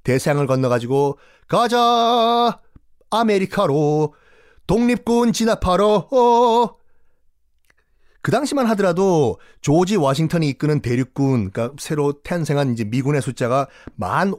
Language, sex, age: Korean, male, 30-49